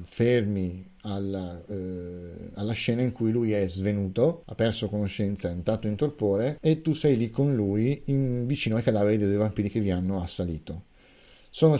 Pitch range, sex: 95-125 Hz, male